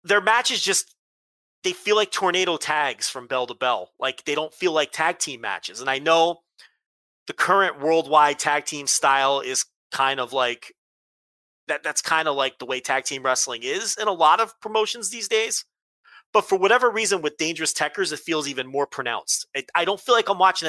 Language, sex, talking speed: English, male, 205 wpm